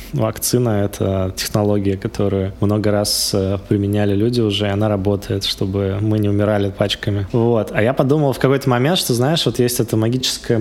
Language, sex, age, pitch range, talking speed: Russian, male, 20-39, 105-120 Hz, 170 wpm